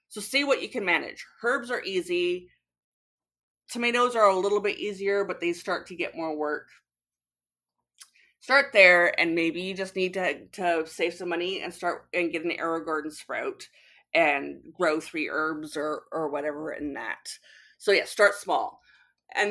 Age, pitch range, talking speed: 30-49, 165-225 Hz, 170 wpm